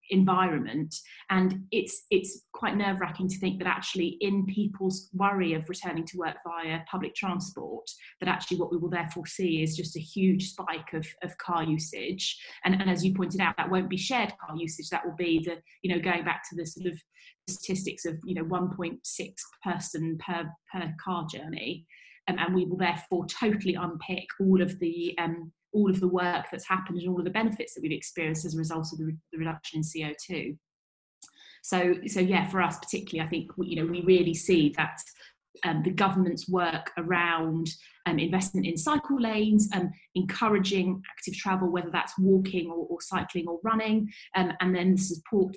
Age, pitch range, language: 30-49, 165-190 Hz, English